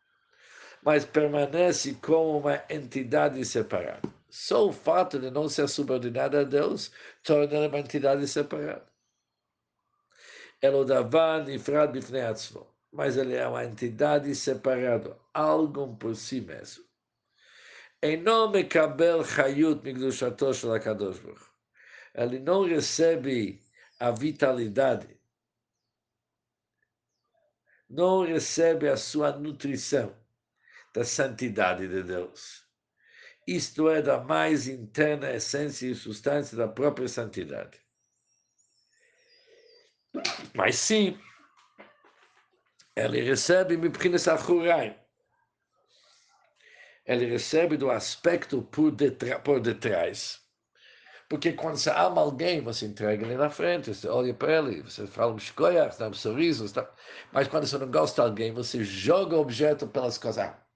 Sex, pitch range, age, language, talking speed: male, 125-160 Hz, 60-79, Portuguese, 105 wpm